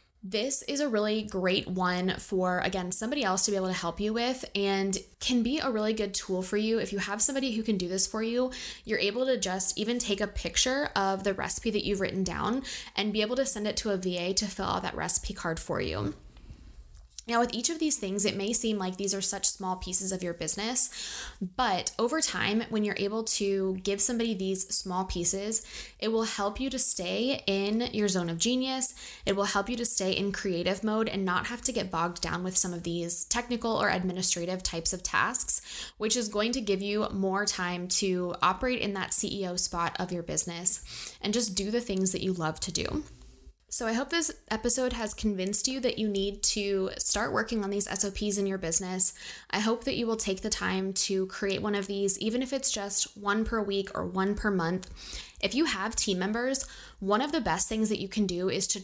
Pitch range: 185-225 Hz